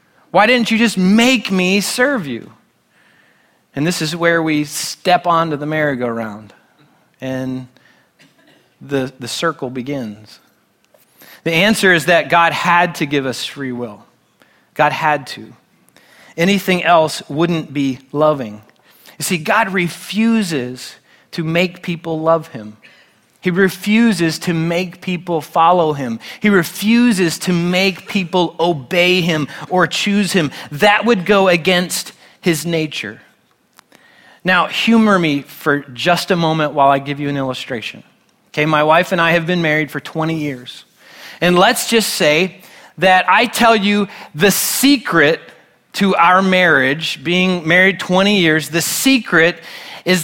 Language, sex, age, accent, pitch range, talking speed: English, male, 30-49, American, 150-190 Hz, 140 wpm